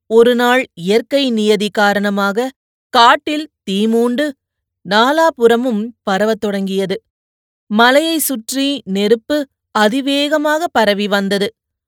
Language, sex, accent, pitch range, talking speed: Tamil, female, native, 195-250 Hz, 75 wpm